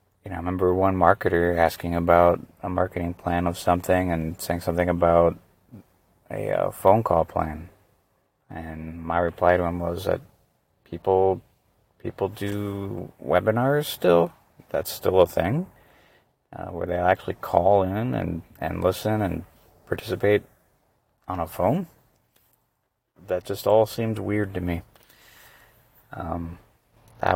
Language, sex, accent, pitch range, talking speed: English, male, American, 85-100 Hz, 130 wpm